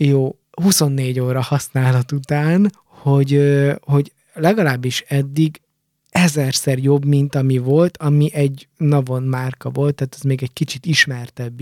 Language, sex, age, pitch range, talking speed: Hungarian, male, 20-39, 130-160 Hz, 130 wpm